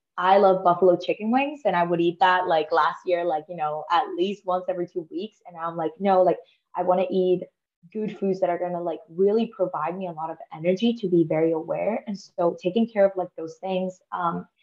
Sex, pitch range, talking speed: female, 165-190 Hz, 235 wpm